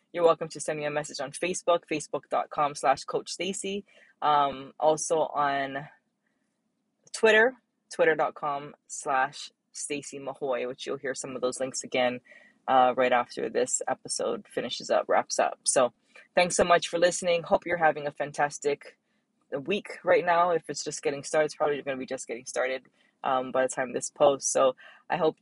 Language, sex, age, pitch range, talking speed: English, female, 20-39, 135-175 Hz, 175 wpm